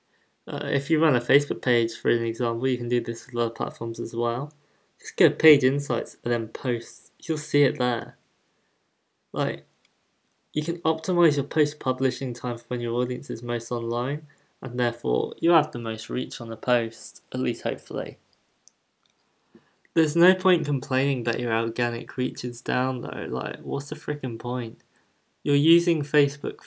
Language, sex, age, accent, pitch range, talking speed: English, male, 20-39, British, 120-145 Hz, 170 wpm